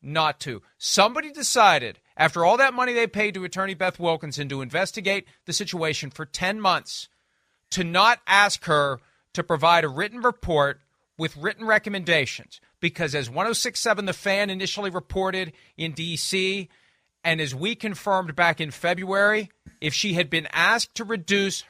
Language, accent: English, American